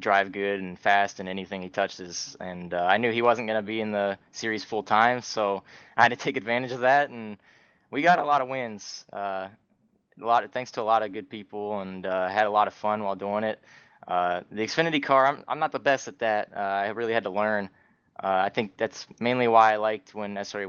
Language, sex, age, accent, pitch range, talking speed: English, male, 20-39, American, 95-115 Hz, 245 wpm